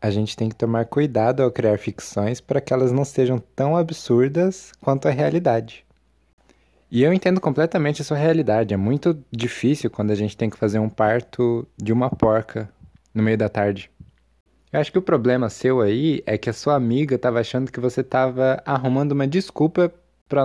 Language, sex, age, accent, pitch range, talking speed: Portuguese, male, 20-39, Brazilian, 110-145 Hz, 190 wpm